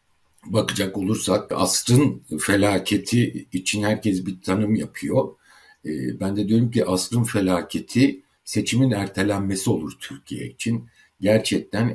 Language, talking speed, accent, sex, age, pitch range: Turkish, 110 wpm, native, male, 60-79, 95-110 Hz